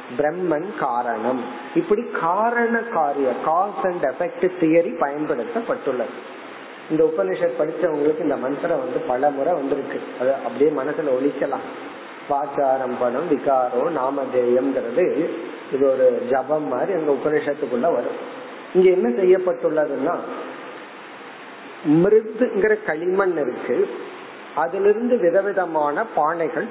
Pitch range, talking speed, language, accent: 150-220 Hz, 65 wpm, Tamil, native